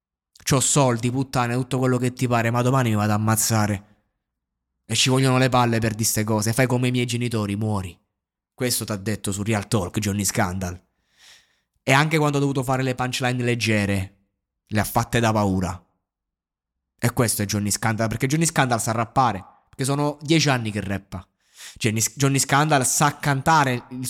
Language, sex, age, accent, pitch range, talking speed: Italian, male, 20-39, native, 105-140 Hz, 180 wpm